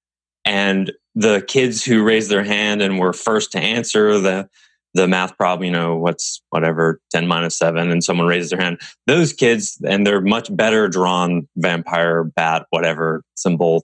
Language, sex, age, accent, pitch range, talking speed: English, male, 20-39, American, 85-120 Hz, 170 wpm